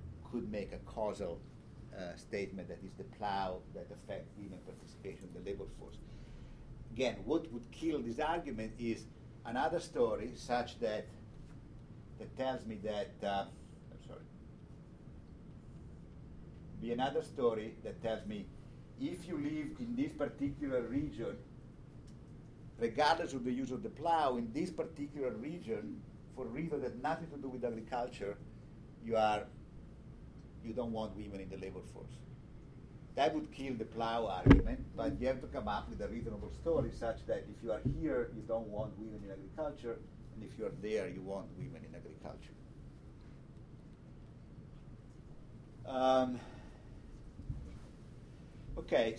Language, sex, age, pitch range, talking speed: English, male, 50-69, 115-145 Hz, 145 wpm